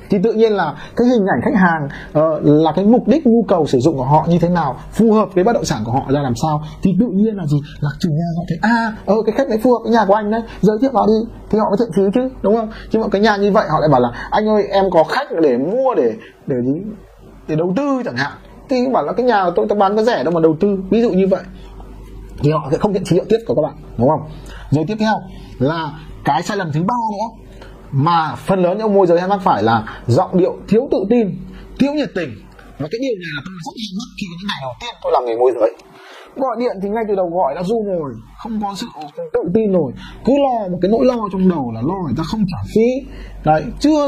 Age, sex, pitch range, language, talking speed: 20-39, male, 160-225 Hz, Vietnamese, 280 wpm